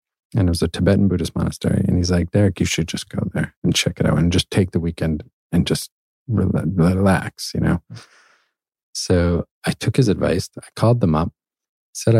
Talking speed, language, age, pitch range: 195 wpm, English, 40-59, 85-100 Hz